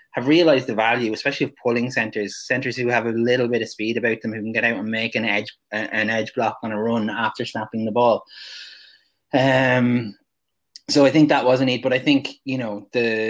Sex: male